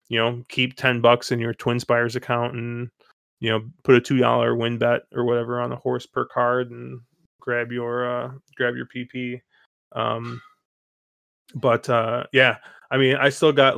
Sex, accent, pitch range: male, American, 115-130 Hz